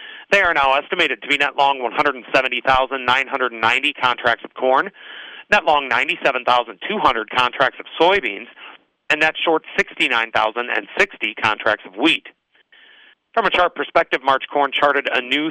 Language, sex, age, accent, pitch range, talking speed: English, male, 40-59, American, 130-160 Hz, 130 wpm